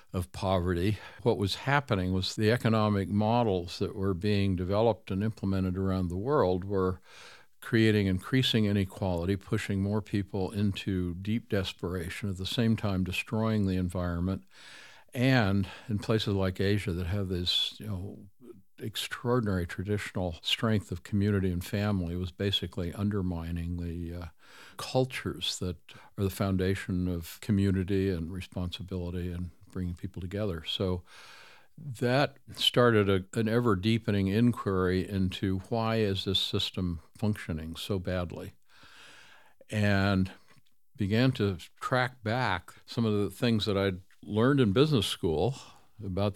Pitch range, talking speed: 95-110 Hz, 125 wpm